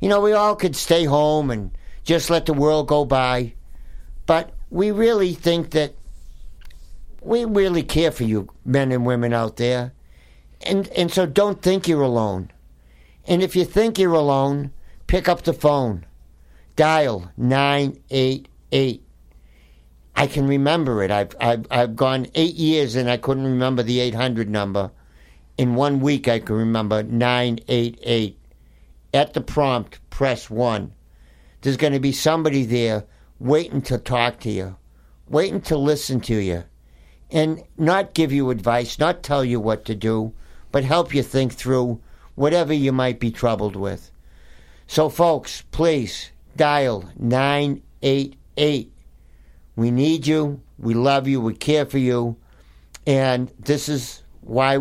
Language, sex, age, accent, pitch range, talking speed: English, male, 60-79, American, 100-145 Hz, 145 wpm